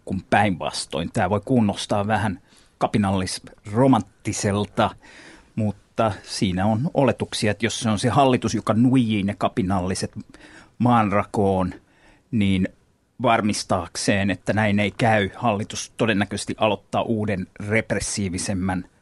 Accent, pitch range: native, 105-130 Hz